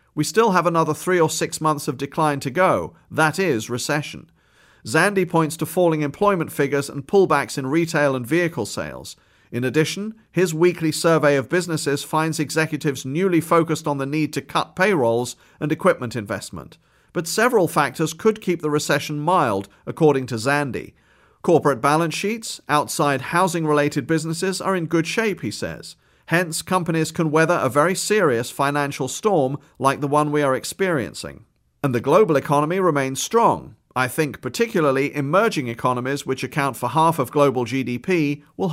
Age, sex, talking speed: 40-59, male, 165 wpm